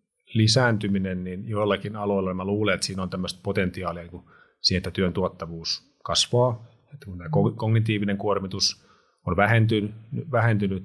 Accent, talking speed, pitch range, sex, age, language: native, 135 wpm, 95-105 Hz, male, 30-49, Finnish